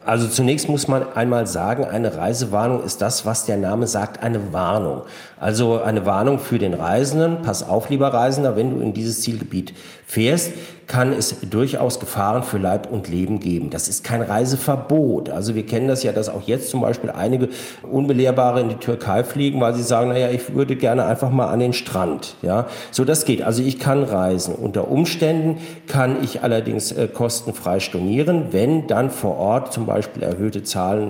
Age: 50-69